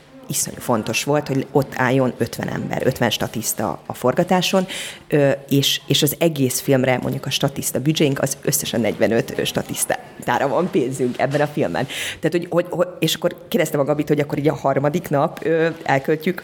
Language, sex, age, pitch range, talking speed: Hungarian, female, 30-49, 135-165 Hz, 155 wpm